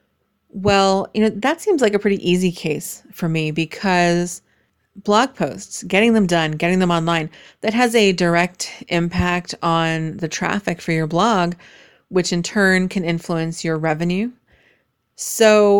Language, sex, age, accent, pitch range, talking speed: English, female, 30-49, American, 170-205 Hz, 150 wpm